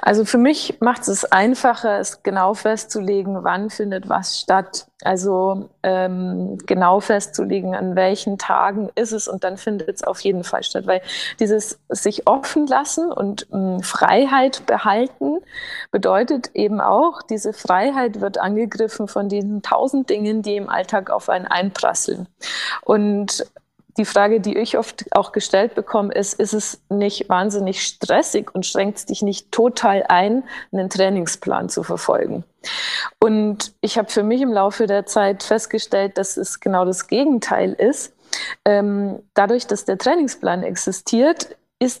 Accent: German